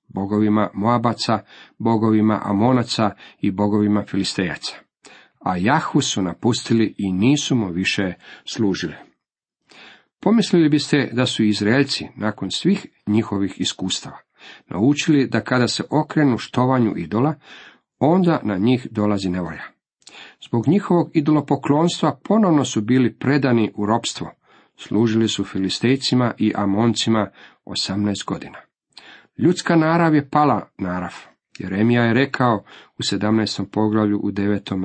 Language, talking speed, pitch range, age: Croatian, 115 wpm, 105-135 Hz, 50-69